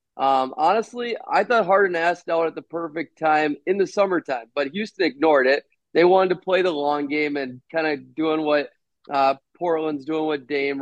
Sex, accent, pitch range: male, American, 140-165 Hz